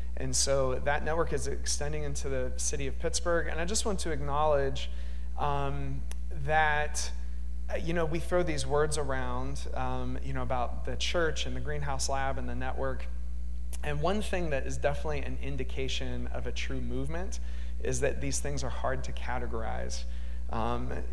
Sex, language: male, English